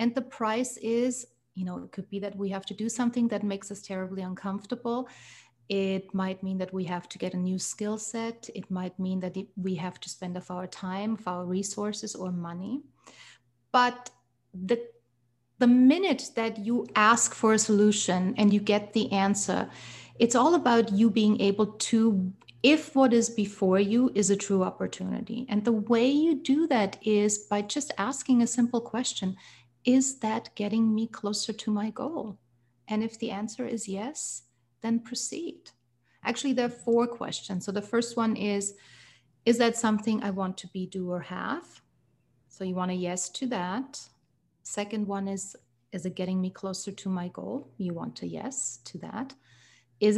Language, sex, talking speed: English, female, 185 wpm